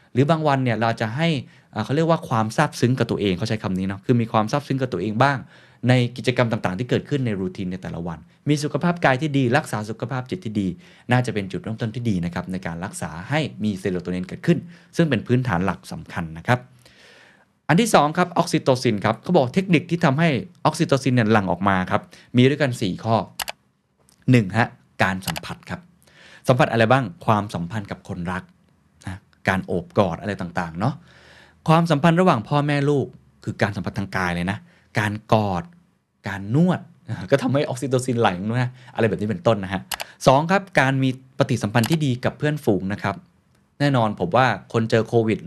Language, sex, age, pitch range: Thai, male, 20-39, 100-140 Hz